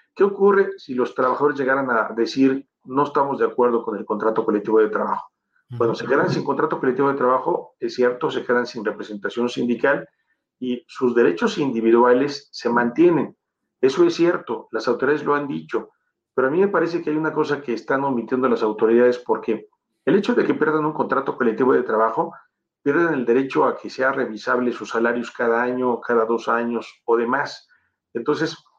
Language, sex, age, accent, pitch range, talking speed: Spanish, male, 40-59, Mexican, 115-145 Hz, 185 wpm